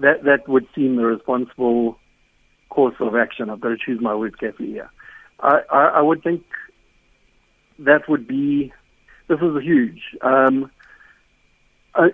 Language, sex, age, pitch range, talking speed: English, male, 60-79, 120-145 Hz, 155 wpm